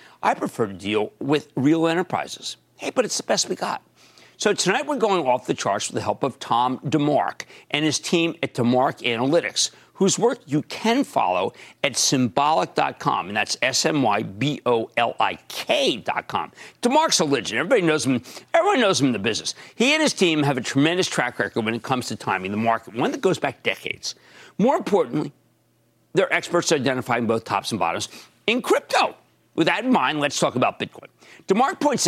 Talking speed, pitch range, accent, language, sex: 180 wpm, 120-200 Hz, American, English, male